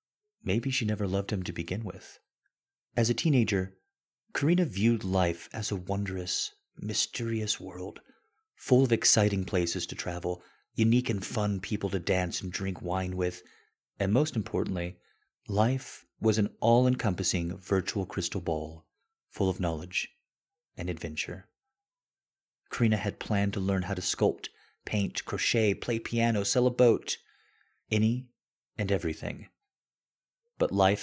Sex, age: male, 30-49